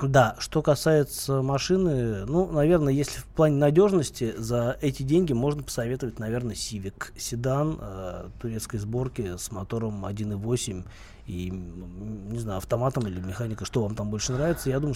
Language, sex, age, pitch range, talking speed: Russian, male, 20-39, 115-145 Hz, 150 wpm